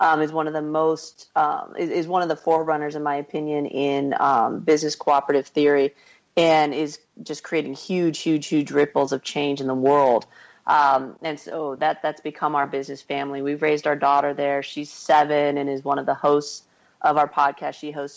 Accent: American